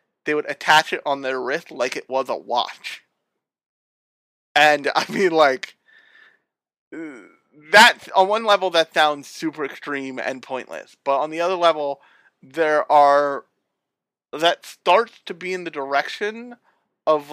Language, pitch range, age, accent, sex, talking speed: English, 135-165 Hz, 30-49, American, male, 140 wpm